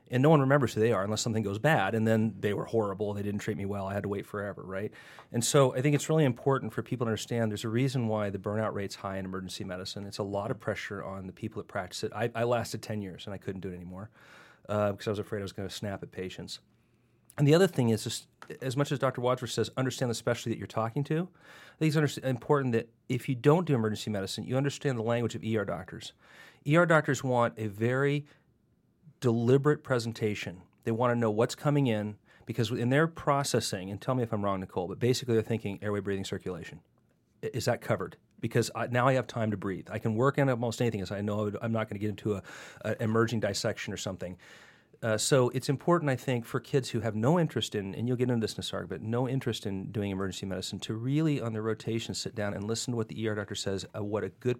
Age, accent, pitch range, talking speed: 40-59, American, 105-130 Hz, 250 wpm